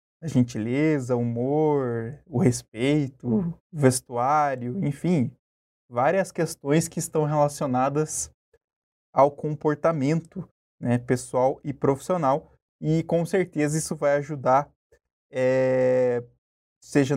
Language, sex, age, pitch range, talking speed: Portuguese, male, 20-39, 130-160 Hz, 95 wpm